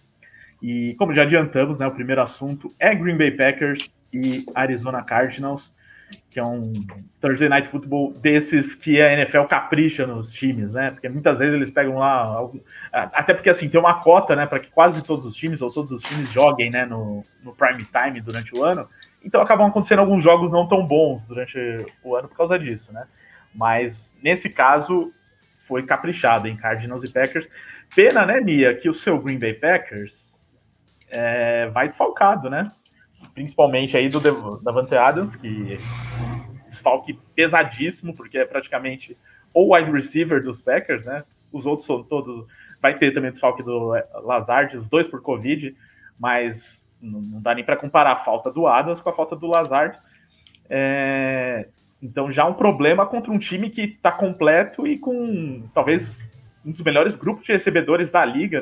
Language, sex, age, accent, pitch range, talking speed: English, male, 20-39, Brazilian, 120-160 Hz, 170 wpm